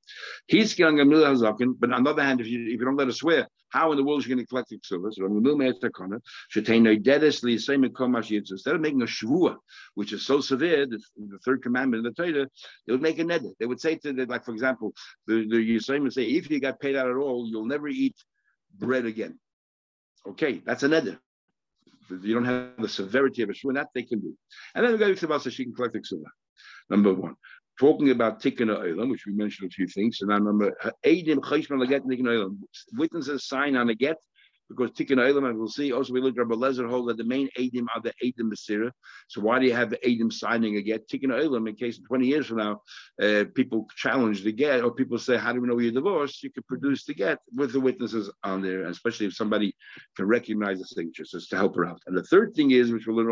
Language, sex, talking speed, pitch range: English, male, 220 wpm, 110-135 Hz